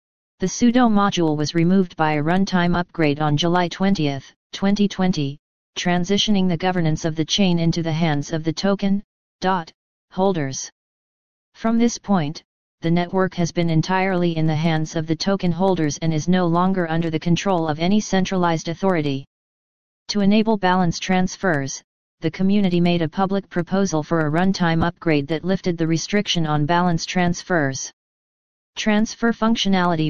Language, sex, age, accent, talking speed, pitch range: English, female, 40-59, American, 150 wpm, 165-195 Hz